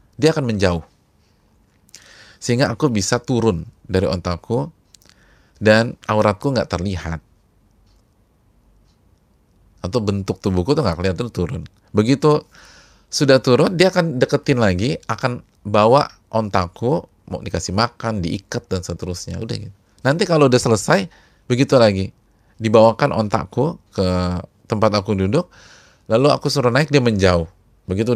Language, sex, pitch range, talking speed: Indonesian, male, 95-130 Hz, 120 wpm